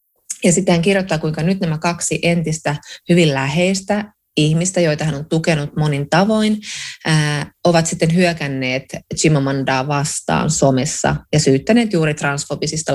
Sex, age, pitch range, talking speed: female, 20-39, 150-190 Hz, 130 wpm